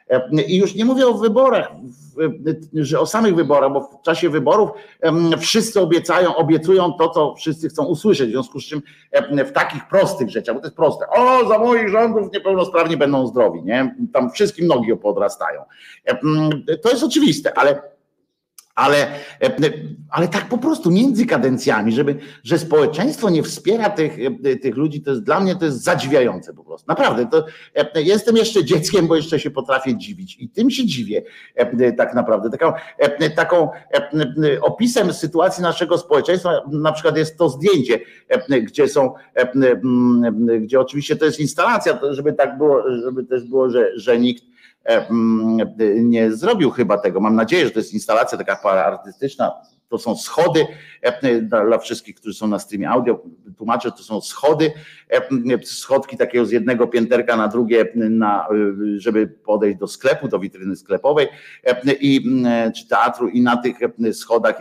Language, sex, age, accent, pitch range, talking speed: Polish, male, 50-69, native, 125-190 Hz, 150 wpm